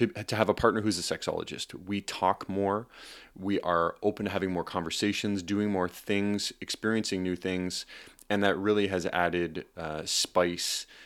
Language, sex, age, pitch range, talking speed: English, male, 30-49, 90-105 Hz, 165 wpm